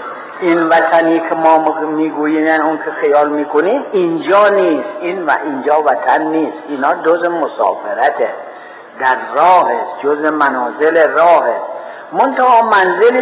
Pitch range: 155-245 Hz